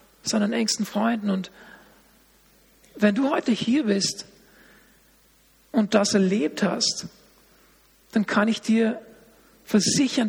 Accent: German